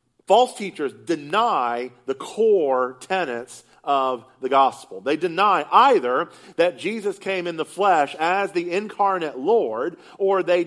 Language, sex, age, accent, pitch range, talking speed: English, male, 40-59, American, 150-200 Hz, 135 wpm